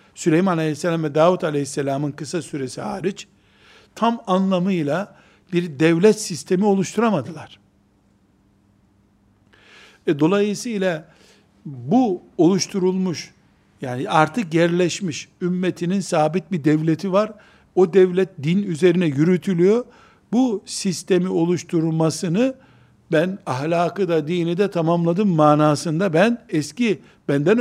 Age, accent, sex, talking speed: 60-79, native, male, 95 wpm